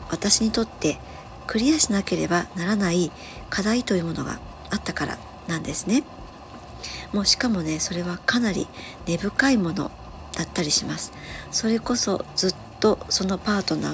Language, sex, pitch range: Japanese, male, 175-225 Hz